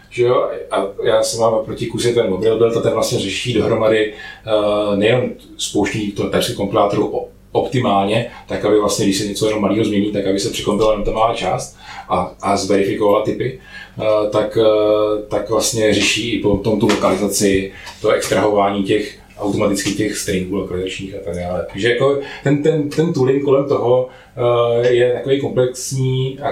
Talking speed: 165 wpm